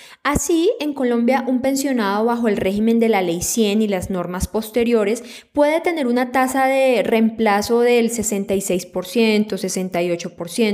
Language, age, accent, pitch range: Spanish, 20-39, Colombian, 200-260 Hz